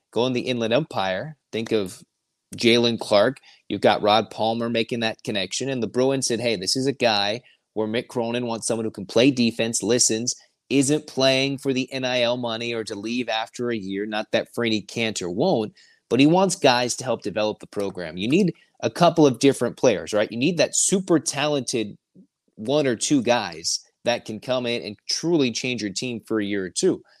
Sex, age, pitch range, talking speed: male, 30-49, 110-130 Hz, 205 wpm